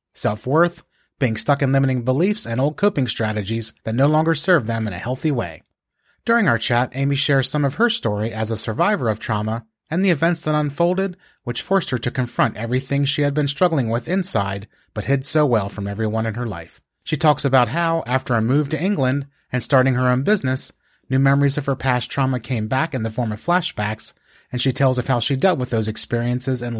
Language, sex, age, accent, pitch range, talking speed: English, male, 30-49, American, 115-150 Hz, 215 wpm